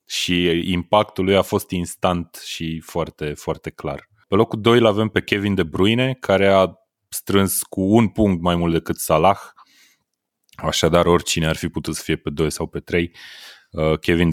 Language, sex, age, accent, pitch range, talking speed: Romanian, male, 30-49, native, 80-90 Hz, 170 wpm